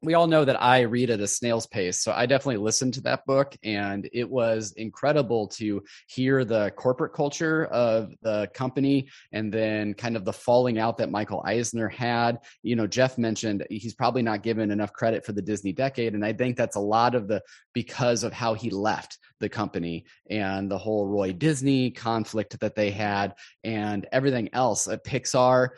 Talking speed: 195 wpm